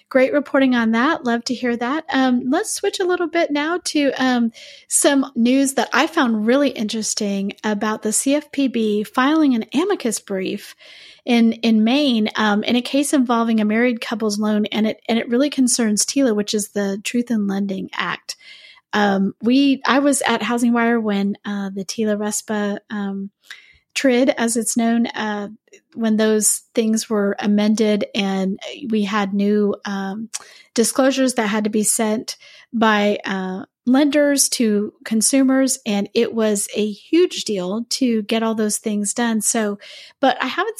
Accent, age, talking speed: American, 30-49, 165 wpm